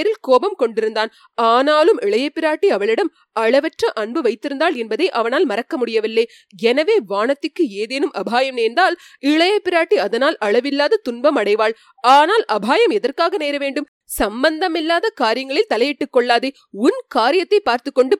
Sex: female